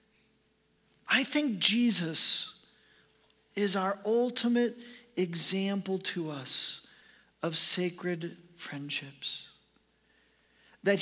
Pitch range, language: 170-215 Hz, English